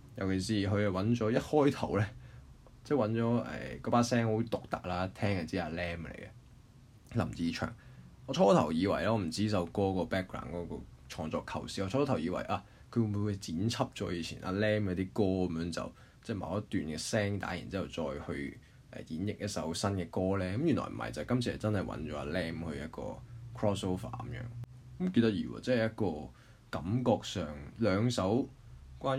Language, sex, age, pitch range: Chinese, male, 20-39, 90-120 Hz